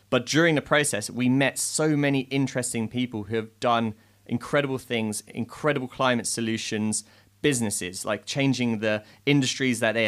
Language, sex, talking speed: English, male, 150 wpm